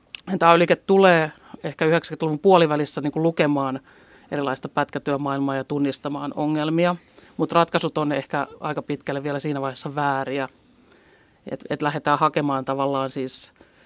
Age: 30-49